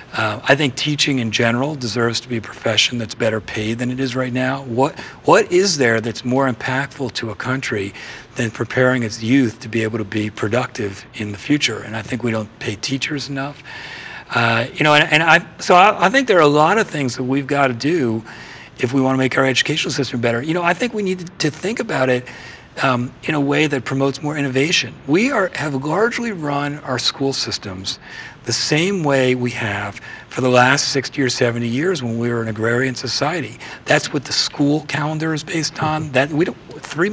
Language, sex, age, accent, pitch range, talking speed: English, male, 40-59, American, 120-150 Hz, 220 wpm